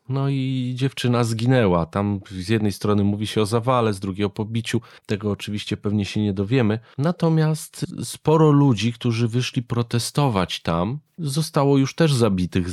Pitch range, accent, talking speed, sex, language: 95-125 Hz, native, 155 wpm, male, Polish